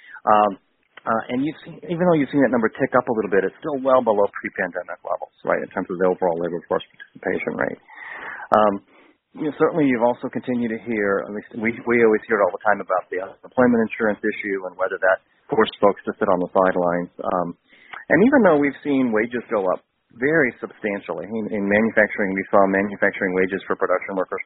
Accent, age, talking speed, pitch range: American, 40-59, 215 wpm, 105-130 Hz